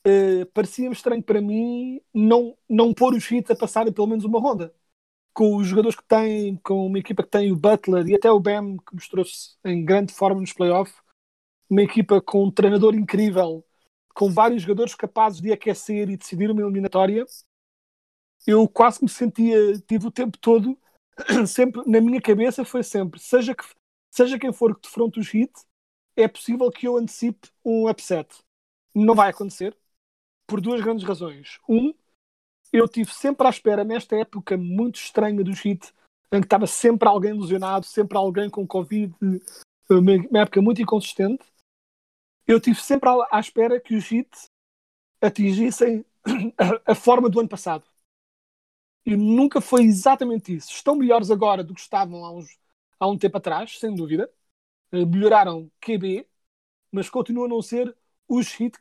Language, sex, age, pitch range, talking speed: Portuguese, male, 30-49, 195-235 Hz, 160 wpm